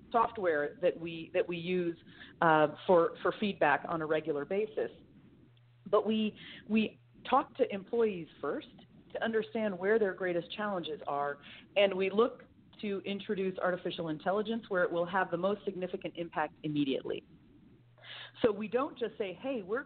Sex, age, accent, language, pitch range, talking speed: female, 40-59, American, English, 170-230 Hz, 155 wpm